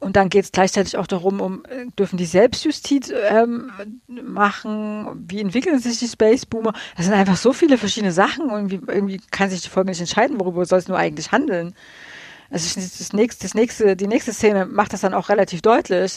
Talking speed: 210 wpm